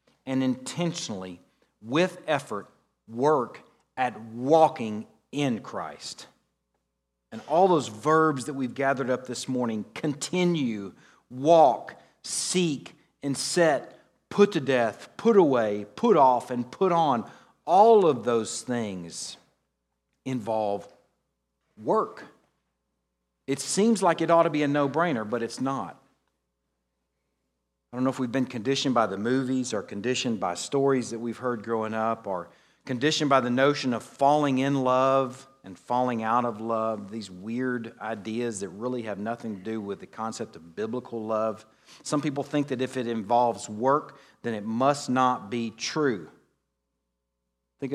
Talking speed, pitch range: 145 wpm, 105-140 Hz